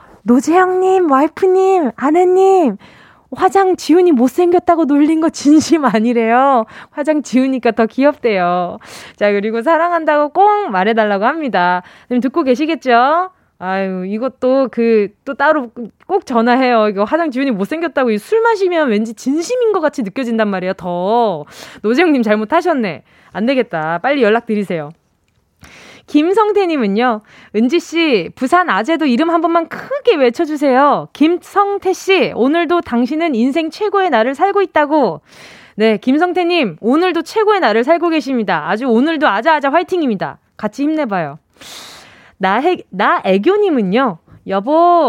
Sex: female